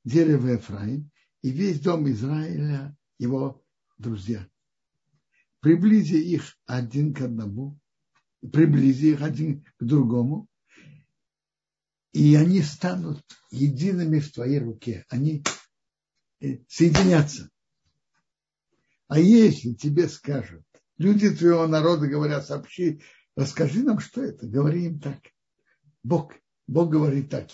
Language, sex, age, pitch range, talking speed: Russian, male, 60-79, 135-165 Hz, 100 wpm